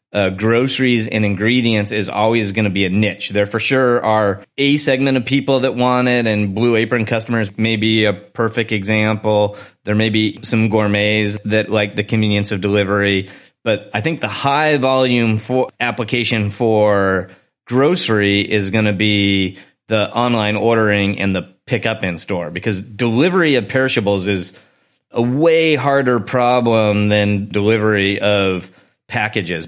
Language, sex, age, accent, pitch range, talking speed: English, male, 30-49, American, 100-120 Hz, 155 wpm